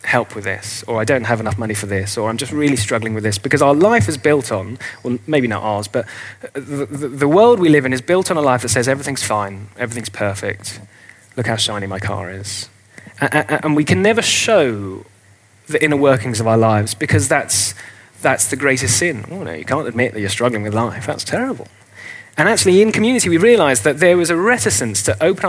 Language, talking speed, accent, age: English, 225 wpm, British, 30-49